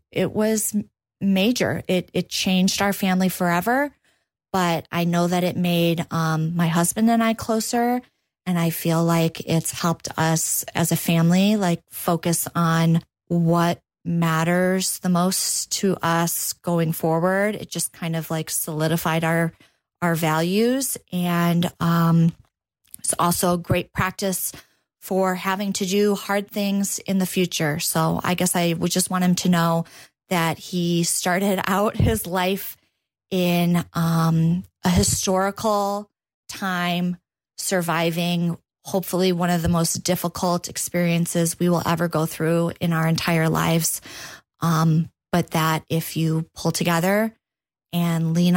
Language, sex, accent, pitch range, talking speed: English, female, American, 165-185 Hz, 140 wpm